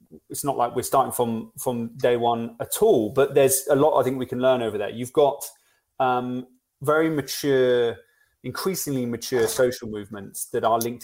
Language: English